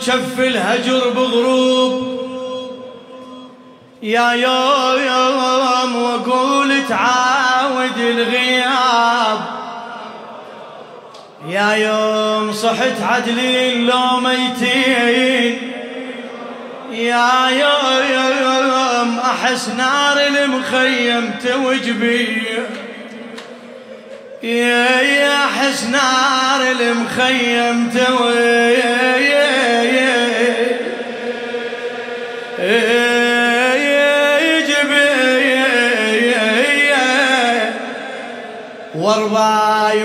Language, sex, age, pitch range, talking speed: Arabic, male, 20-39, 235-260 Hz, 35 wpm